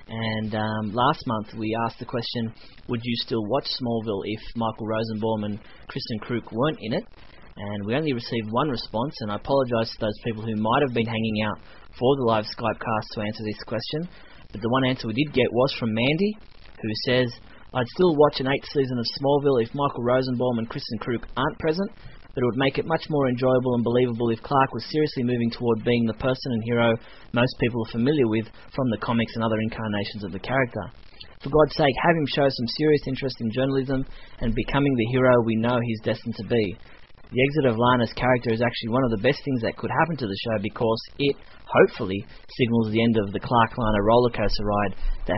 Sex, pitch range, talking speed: male, 110-130 Hz, 215 wpm